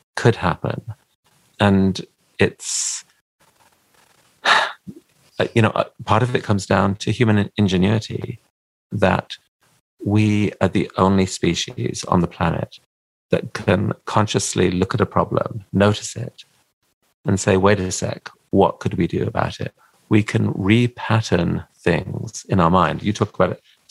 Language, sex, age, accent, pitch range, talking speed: English, male, 40-59, British, 95-115 Hz, 140 wpm